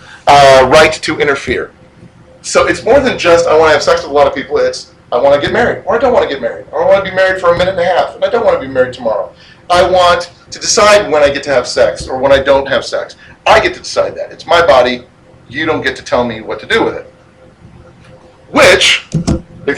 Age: 40-59